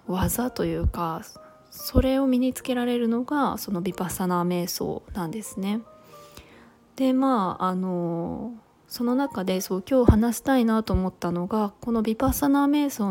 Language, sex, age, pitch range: Japanese, female, 20-39, 185-240 Hz